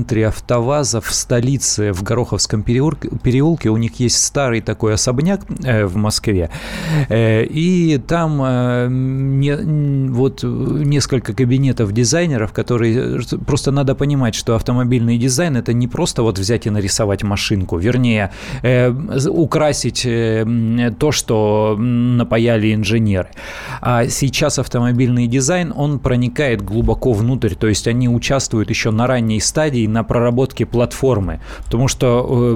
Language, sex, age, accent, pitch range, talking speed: Russian, male, 20-39, native, 110-130 Hz, 120 wpm